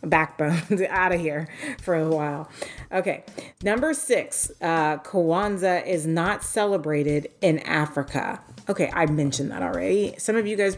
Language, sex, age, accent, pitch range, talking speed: English, female, 30-49, American, 150-190 Hz, 145 wpm